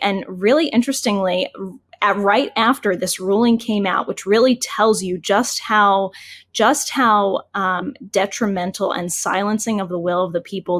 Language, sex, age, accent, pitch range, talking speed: English, female, 10-29, American, 185-230 Hz, 150 wpm